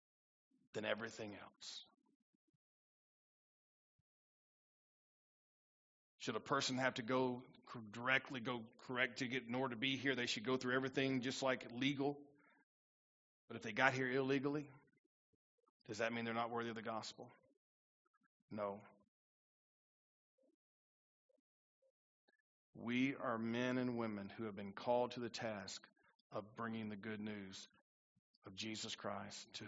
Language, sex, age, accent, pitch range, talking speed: English, male, 40-59, American, 110-135 Hz, 130 wpm